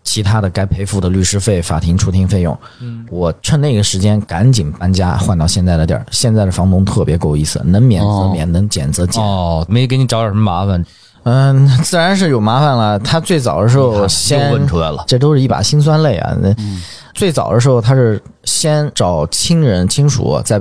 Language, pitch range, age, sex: Chinese, 95-125 Hz, 20-39, male